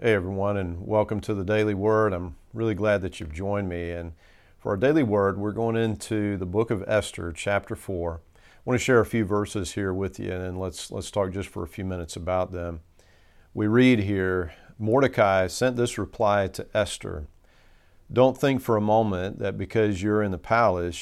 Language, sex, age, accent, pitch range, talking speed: English, male, 40-59, American, 90-110 Hz, 200 wpm